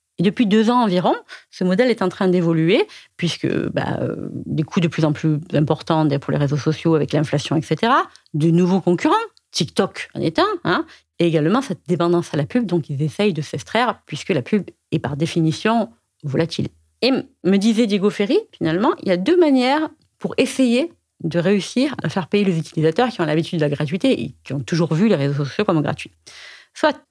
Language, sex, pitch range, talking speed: French, female, 160-215 Hz, 200 wpm